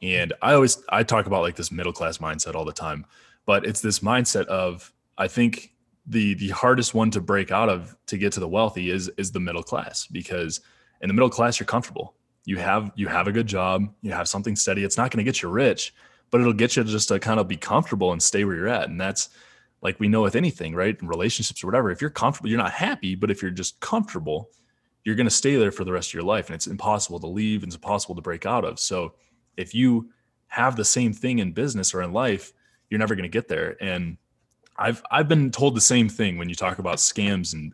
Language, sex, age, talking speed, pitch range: English, male, 20-39, 245 wpm, 90-115 Hz